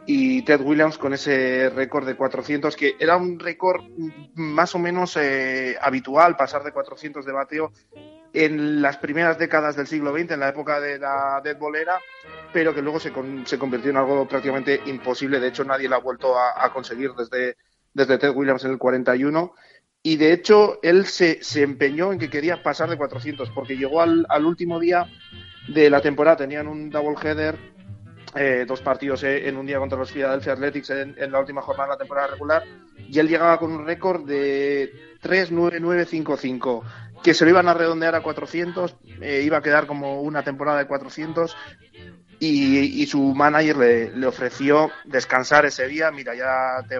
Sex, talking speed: male, 185 wpm